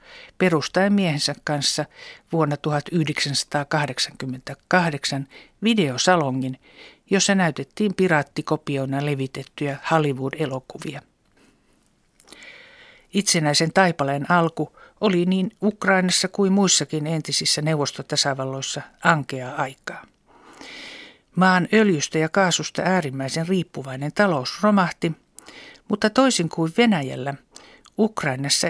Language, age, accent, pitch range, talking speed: Finnish, 60-79, native, 140-190 Hz, 75 wpm